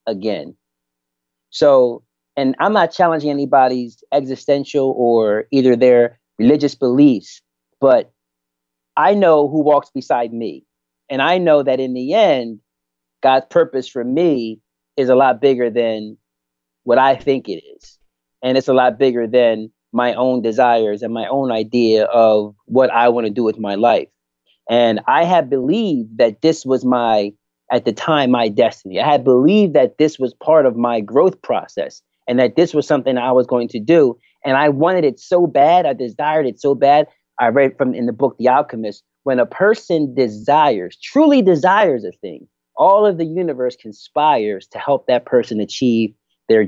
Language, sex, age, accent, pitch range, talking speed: English, male, 30-49, American, 110-150 Hz, 175 wpm